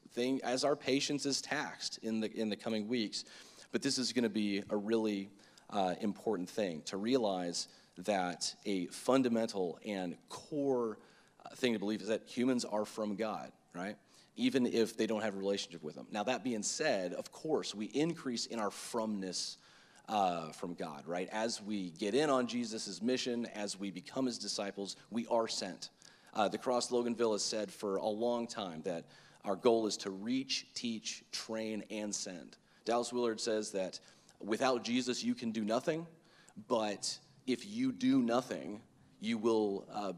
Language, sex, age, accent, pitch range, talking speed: English, male, 30-49, American, 100-125 Hz, 175 wpm